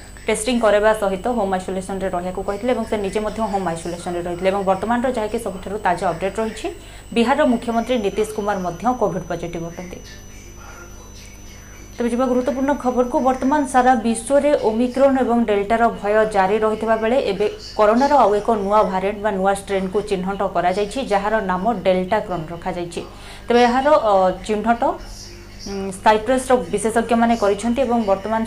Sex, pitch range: female, 185-235 Hz